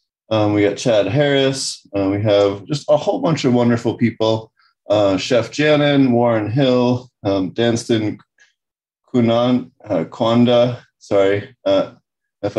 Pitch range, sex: 105-130 Hz, male